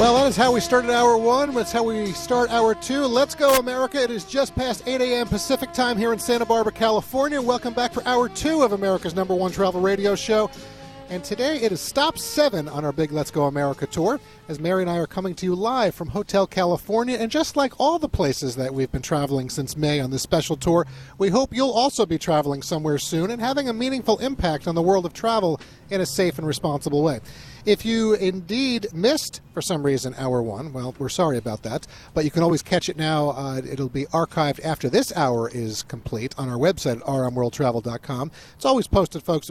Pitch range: 135-230 Hz